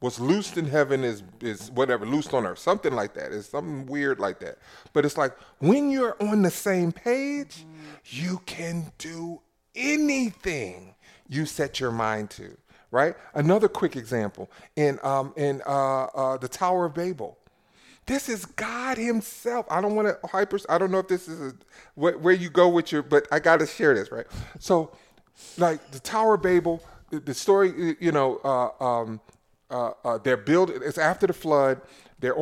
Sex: male